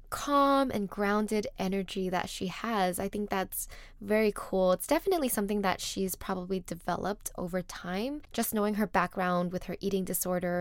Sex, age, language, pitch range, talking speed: female, 10-29, English, 185-210 Hz, 165 wpm